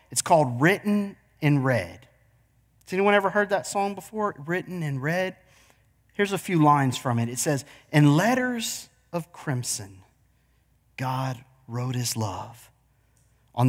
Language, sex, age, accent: English, male, 40-59, American